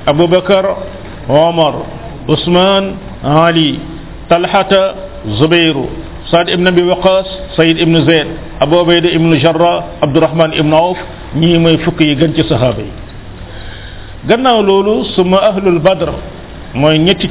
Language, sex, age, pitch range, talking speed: French, male, 50-69, 145-190 Hz, 110 wpm